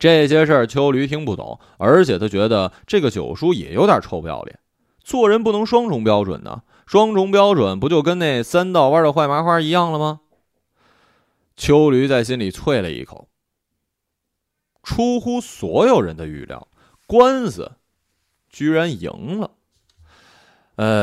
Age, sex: 20-39, male